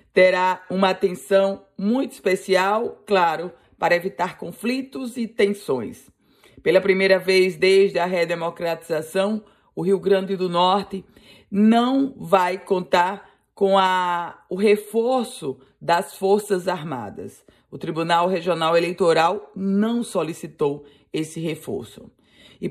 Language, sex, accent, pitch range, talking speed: Portuguese, female, Brazilian, 170-200 Hz, 105 wpm